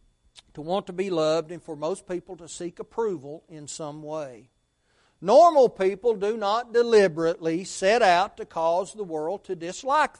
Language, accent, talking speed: English, American, 165 wpm